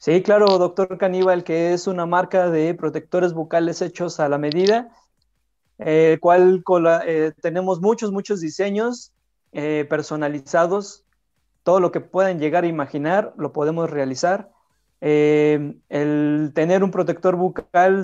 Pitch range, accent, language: 150-185 Hz, Mexican, Spanish